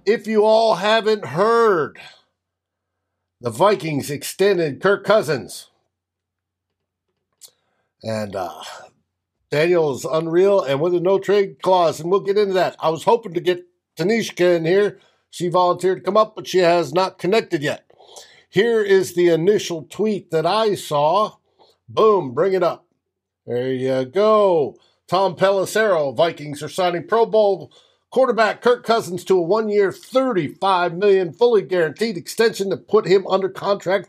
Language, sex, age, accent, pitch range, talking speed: English, male, 60-79, American, 155-210 Hz, 145 wpm